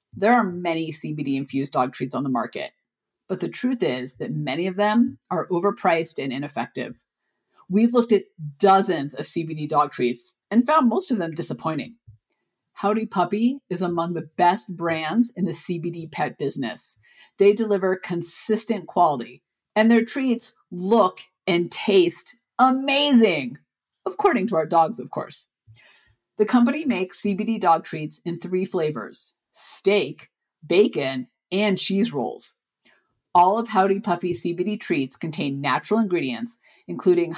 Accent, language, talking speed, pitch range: American, English, 140 wpm, 160-215 Hz